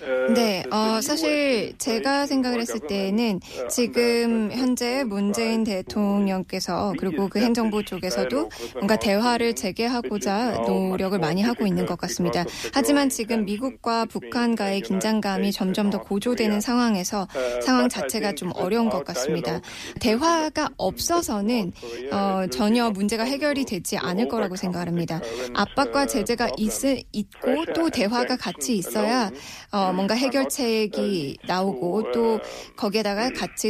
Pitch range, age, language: 195-250 Hz, 20-39, Korean